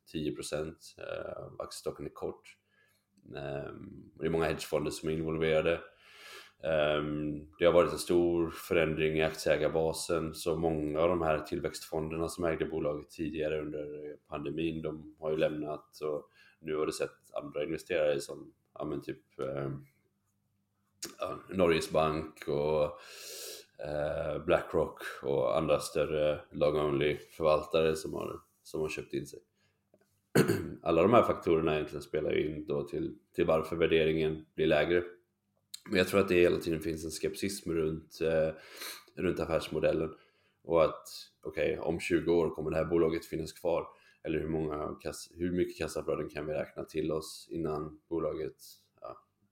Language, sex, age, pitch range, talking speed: Swedish, male, 20-39, 75-85 Hz, 145 wpm